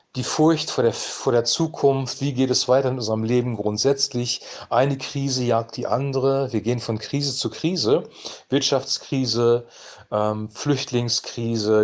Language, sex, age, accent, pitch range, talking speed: German, male, 40-59, German, 115-145 Hz, 135 wpm